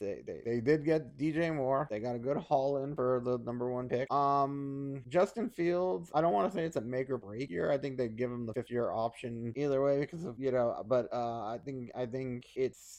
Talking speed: 250 wpm